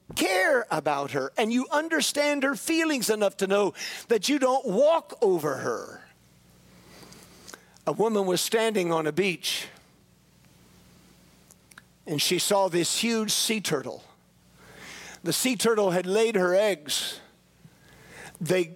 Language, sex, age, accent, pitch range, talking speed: English, male, 50-69, American, 170-230 Hz, 125 wpm